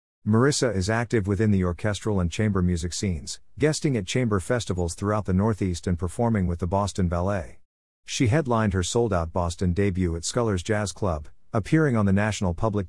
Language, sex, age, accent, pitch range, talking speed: English, male, 50-69, American, 90-115 Hz, 175 wpm